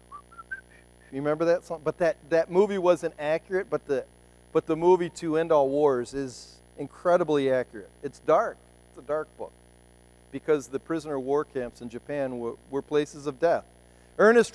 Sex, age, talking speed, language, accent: male, 40-59, 170 wpm, English, American